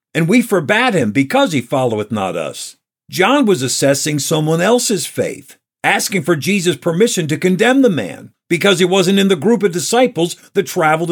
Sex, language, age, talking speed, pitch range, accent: male, English, 50-69, 180 wpm, 140-195 Hz, American